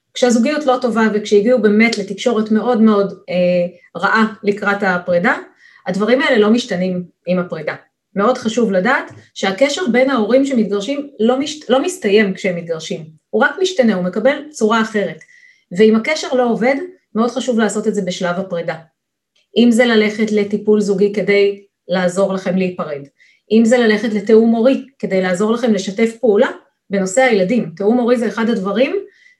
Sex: female